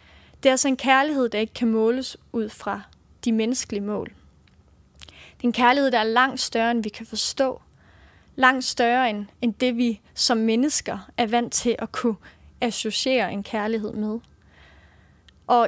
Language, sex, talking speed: English, female, 160 wpm